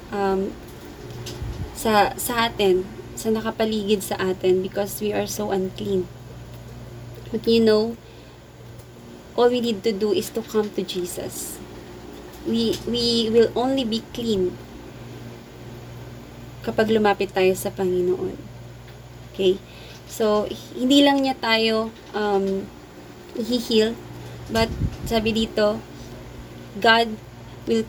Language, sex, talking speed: Filipino, female, 110 wpm